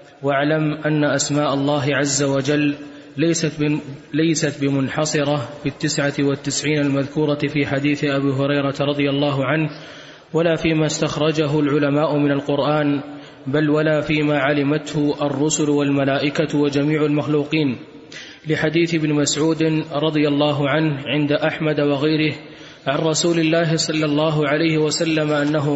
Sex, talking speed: male, 120 wpm